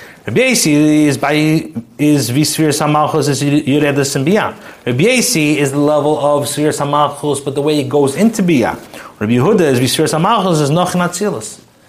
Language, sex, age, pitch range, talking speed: English, male, 30-49, 135-165 Hz, 155 wpm